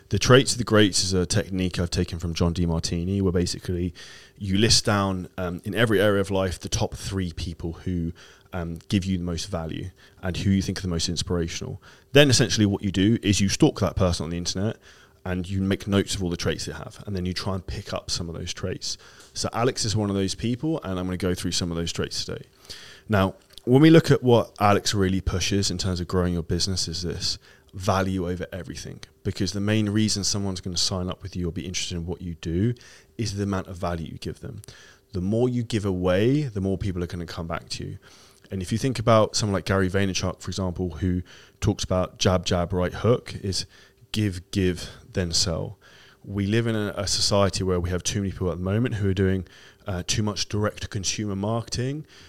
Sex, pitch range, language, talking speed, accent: male, 90-105 Hz, English, 235 wpm, British